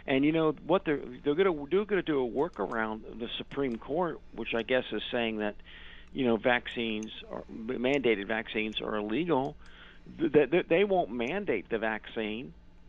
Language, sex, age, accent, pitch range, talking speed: English, male, 50-69, American, 115-145 Hz, 170 wpm